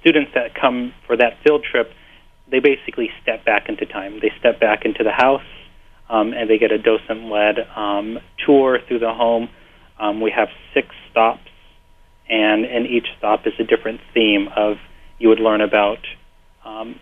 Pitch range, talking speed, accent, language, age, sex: 110-125 Hz, 170 wpm, American, English, 30-49, male